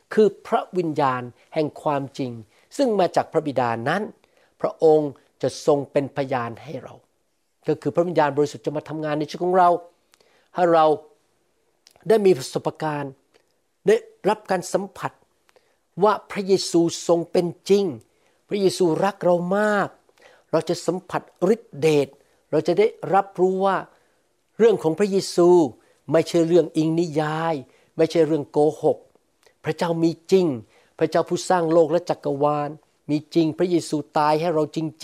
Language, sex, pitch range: Thai, male, 155-185 Hz